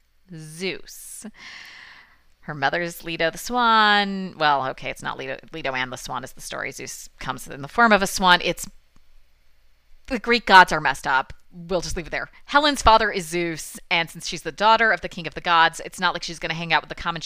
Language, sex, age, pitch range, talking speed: English, female, 30-49, 150-205 Hz, 220 wpm